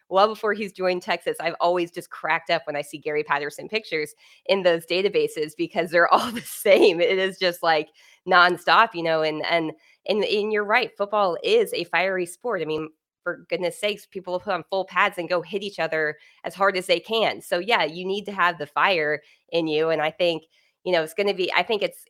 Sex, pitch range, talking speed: female, 155-185 Hz, 230 wpm